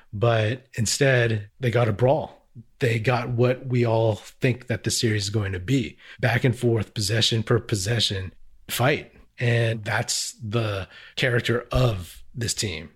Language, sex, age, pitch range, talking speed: English, male, 30-49, 105-130 Hz, 155 wpm